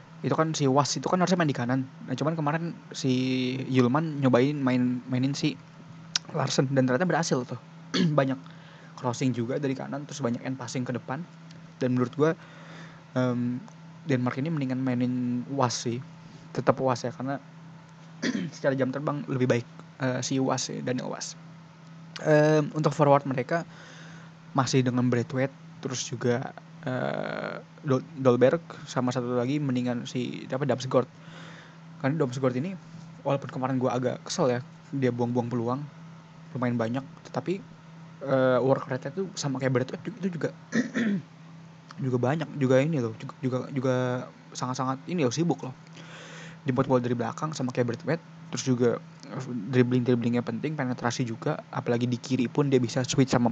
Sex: male